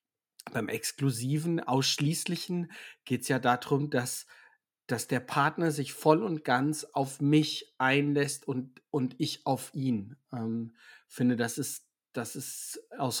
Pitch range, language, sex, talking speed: 130-155 Hz, German, male, 130 wpm